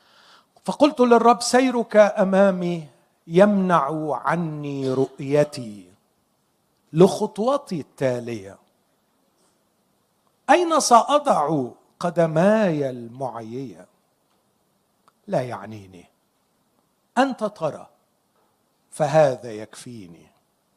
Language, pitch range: Arabic, 130-215 Hz